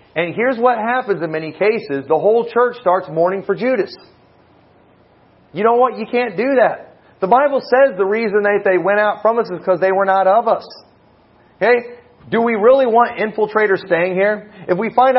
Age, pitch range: 40-59, 175-245 Hz